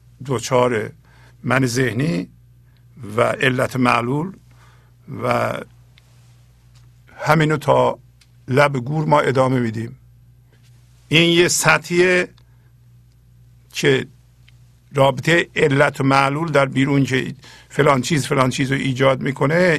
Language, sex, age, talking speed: Persian, male, 50-69, 90 wpm